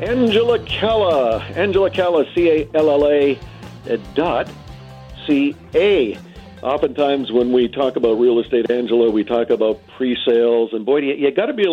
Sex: male